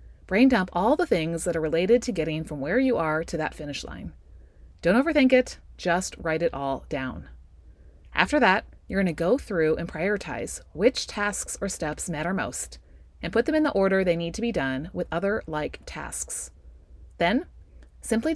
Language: English